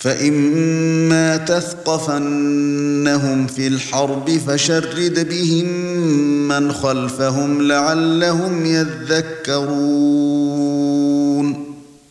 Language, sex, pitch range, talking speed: Arabic, male, 145-170 Hz, 50 wpm